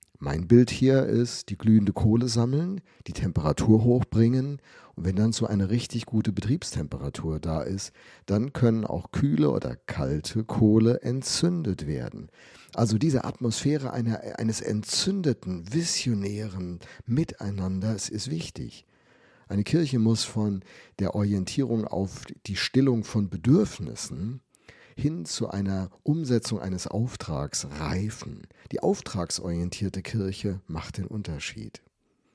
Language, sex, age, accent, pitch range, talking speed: German, male, 50-69, German, 95-120 Hz, 115 wpm